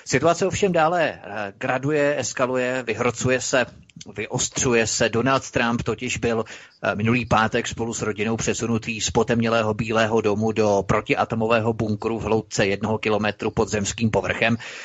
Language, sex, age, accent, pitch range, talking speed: Czech, male, 30-49, native, 110-125 Hz, 135 wpm